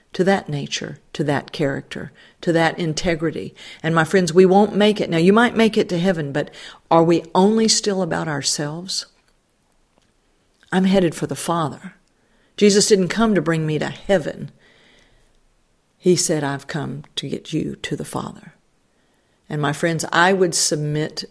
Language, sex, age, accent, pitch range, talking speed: English, female, 50-69, American, 150-180 Hz, 165 wpm